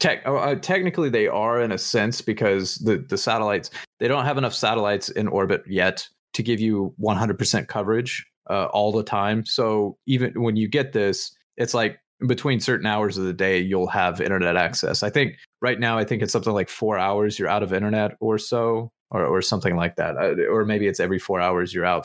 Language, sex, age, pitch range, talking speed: English, male, 20-39, 95-125 Hz, 210 wpm